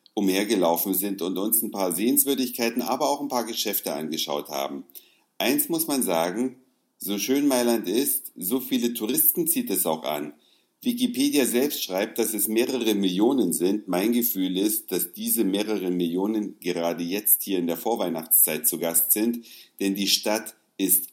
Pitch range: 95-125 Hz